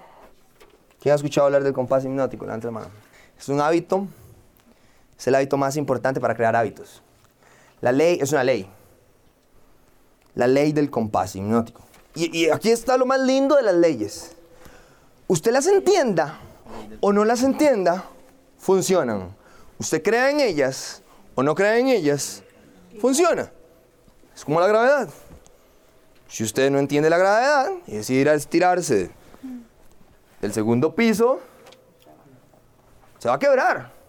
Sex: male